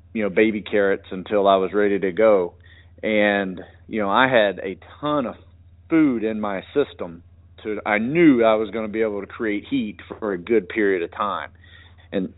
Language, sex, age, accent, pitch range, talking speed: English, male, 40-59, American, 90-115 Hz, 195 wpm